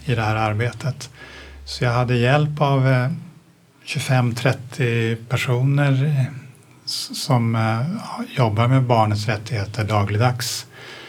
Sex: male